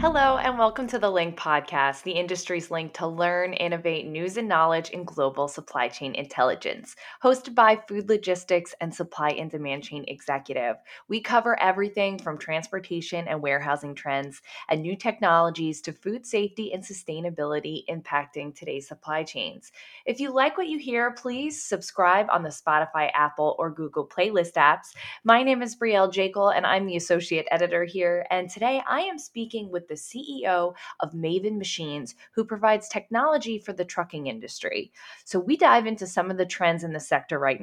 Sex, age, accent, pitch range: female, 20-39, American, 155-210 Hz